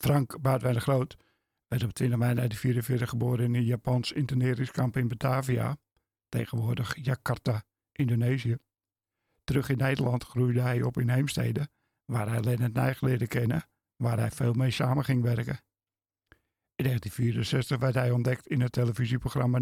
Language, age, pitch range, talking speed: Dutch, 60-79, 115-130 Hz, 145 wpm